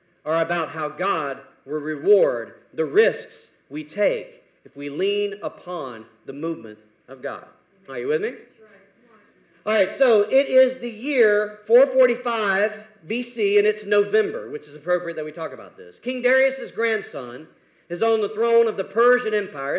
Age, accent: 40-59, American